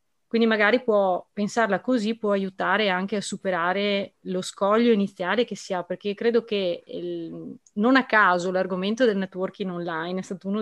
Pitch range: 185-230 Hz